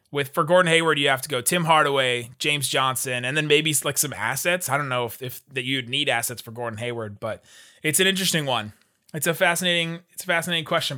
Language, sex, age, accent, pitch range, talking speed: English, male, 20-39, American, 130-175 Hz, 230 wpm